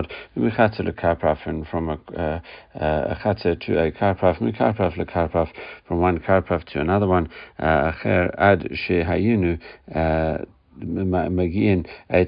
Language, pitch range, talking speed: English, 80-95 Hz, 125 wpm